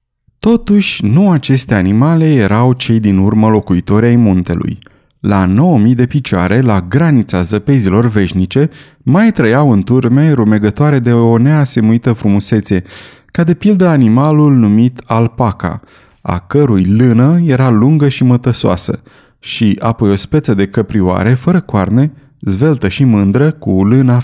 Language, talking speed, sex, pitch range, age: Romanian, 135 wpm, male, 105-140 Hz, 20-39